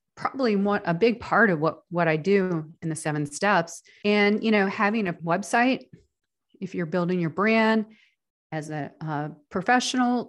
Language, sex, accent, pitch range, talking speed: English, female, American, 170-235 Hz, 170 wpm